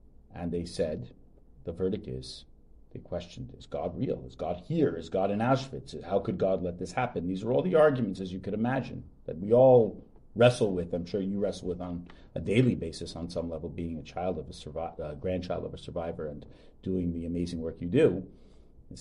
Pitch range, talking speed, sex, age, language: 70-95 Hz, 220 wpm, male, 50-69, English